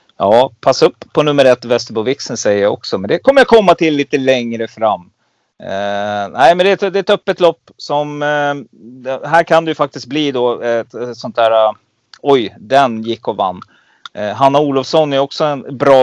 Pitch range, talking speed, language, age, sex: 115-155 Hz, 215 wpm, Swedish, 30-49, male